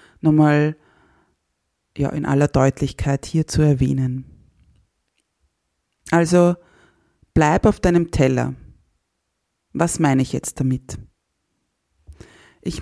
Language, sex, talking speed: German, female, 85 wpm